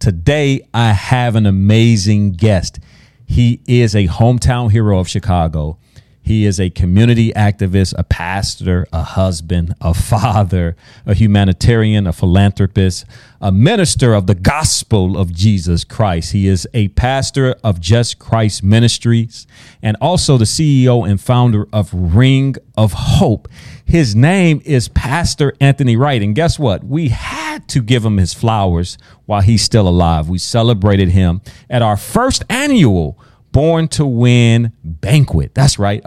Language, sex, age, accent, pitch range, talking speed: English, male, 40-59, American, 95-125 Hz, 145 wpm